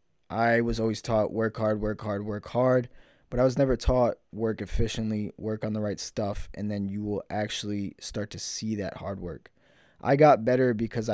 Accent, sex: American, male